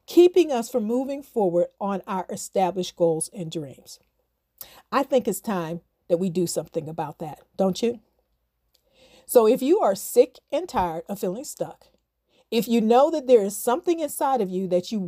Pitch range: 180-255 Hz